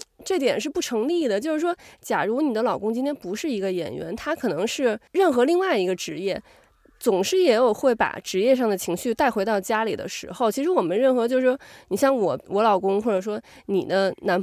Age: 20-39